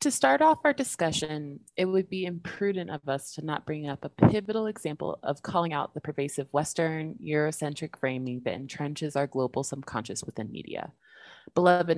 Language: English